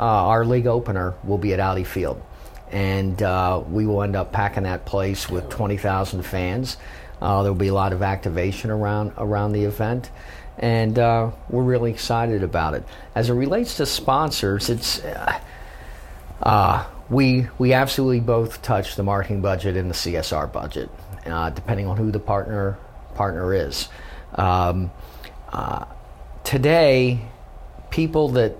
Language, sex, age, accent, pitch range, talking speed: English, male, 40-59, American, 95-120 Hz, 155 wpm